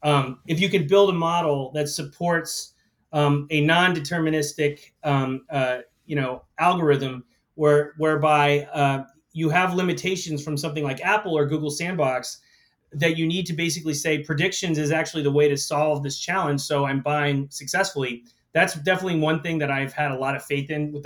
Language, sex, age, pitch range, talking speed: English, male, 30-49, 140-155 Hz, 175 wpm